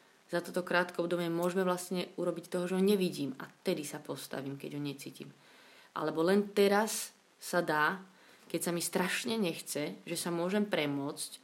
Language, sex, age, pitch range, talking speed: Slovak, female, 30-49, 150-180 Hz, 170 wpm